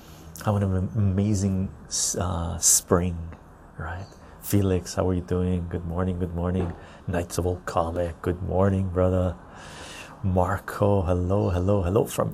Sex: male